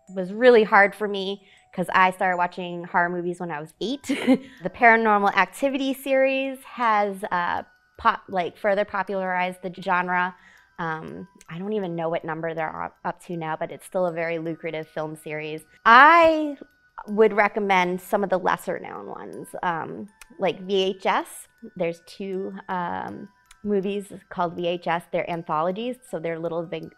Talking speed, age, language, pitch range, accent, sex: 155 wpm, 20-39, English, 175-225 Hz, American, female